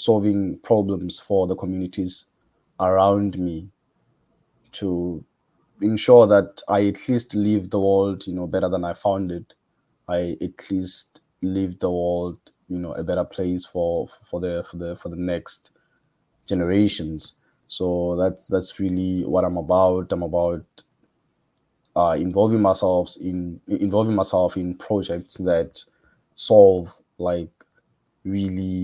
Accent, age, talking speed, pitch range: South African, 20-39, 135 wpm, 90-95 Hz